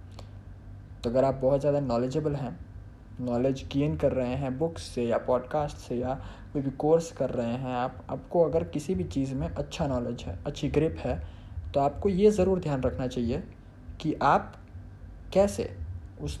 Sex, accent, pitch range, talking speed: male, native, 90-140 Hz, 175 wpm